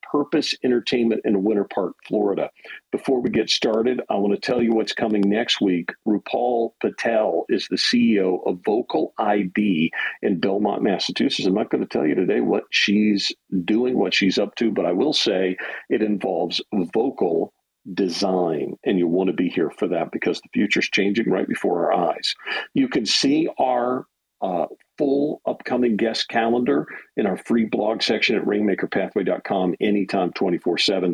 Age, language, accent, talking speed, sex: 50-69, English, American, 170 wpm, male